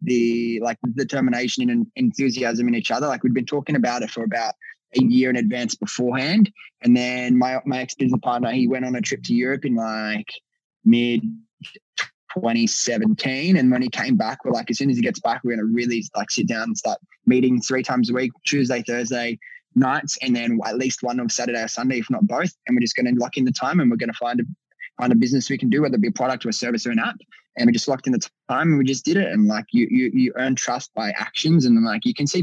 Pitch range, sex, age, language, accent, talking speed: 125-200 Hz, male, 20-39, English, Australian, 260 wpm